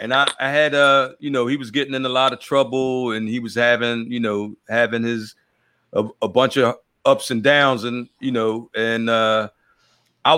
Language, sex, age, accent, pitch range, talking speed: English, male, 40-59, American, 120-150 Hz, 210 wpm